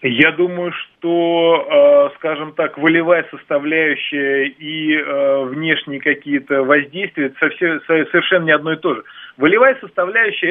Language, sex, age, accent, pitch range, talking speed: Russian, male, 20-39, native, 140-180 Hz, 115 wpm